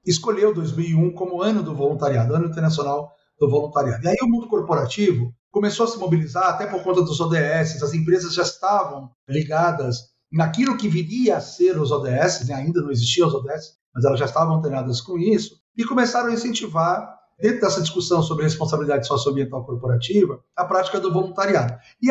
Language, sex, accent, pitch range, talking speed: Portuguese, male, Brazilian, 155-210 Hz, 175 wpm